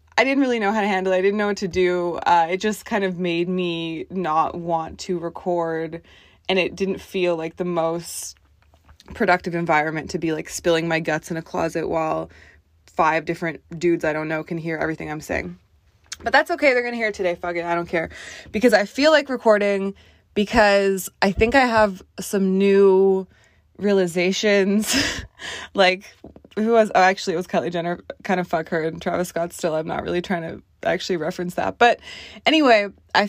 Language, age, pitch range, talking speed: English, 20-39, 165-195 Hz, 200 wpm